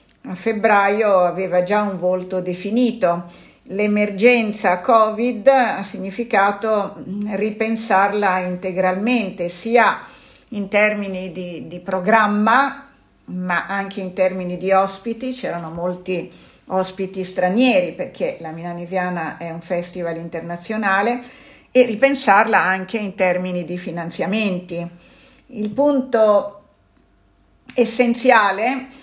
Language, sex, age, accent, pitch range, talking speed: Italian, female, 50-69, native, 180-225 Hz, 95 wpm